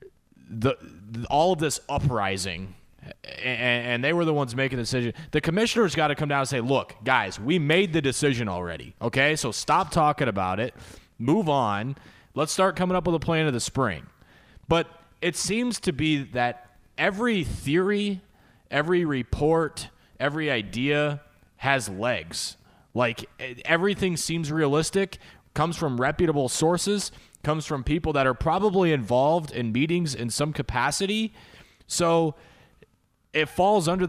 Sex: male